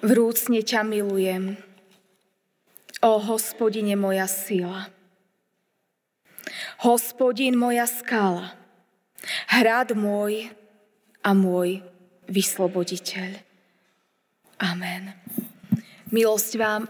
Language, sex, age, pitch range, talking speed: Slovak, female, 20-39, 190-230 Hz, 65 wpm